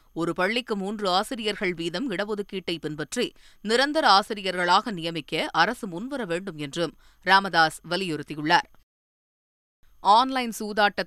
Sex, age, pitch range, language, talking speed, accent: female, 20-39, 165-215 Hz, Tamil, 90 wpm, native